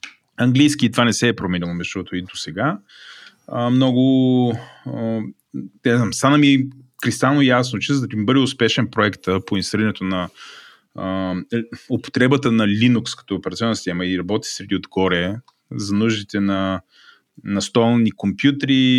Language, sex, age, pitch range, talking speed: Bulgarian, male, 20-39, 100-130 Hz, 140 wpm